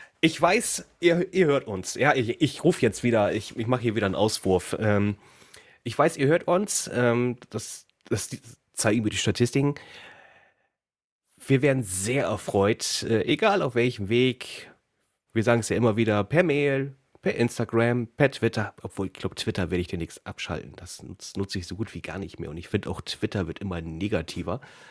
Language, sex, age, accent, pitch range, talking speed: German, male, 30-49, German, 105-140 Hz, 190 wpm